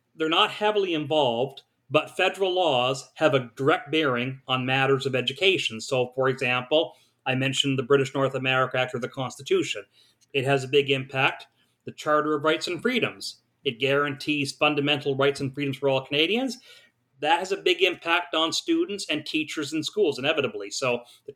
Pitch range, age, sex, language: 135-165 Hz, 40-59, male, English